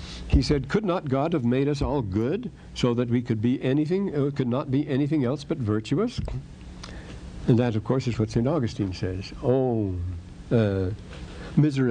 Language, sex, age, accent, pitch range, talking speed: English, male, 60-79, American, 105-130 Hz, 175 wpm